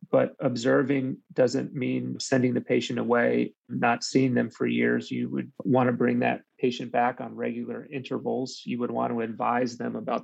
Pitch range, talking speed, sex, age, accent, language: 110-135 Hz, 180 wpm, male, 30-49, American, English